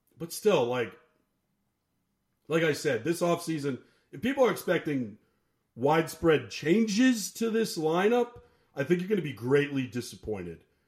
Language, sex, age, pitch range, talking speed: English, male, 40-59, 135-180 Hz, 140 wpm